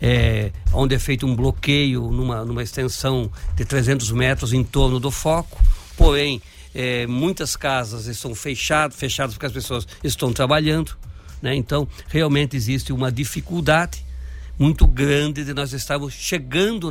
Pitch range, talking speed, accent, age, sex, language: 110-140 Hz, 140 wpm, Brazilian, 60-79, male, English